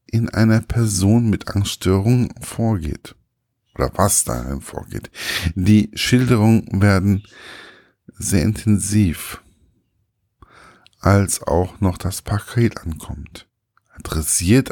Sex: male